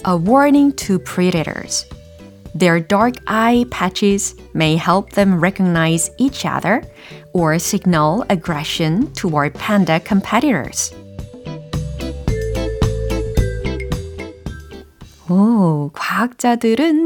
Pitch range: 160-235 Hz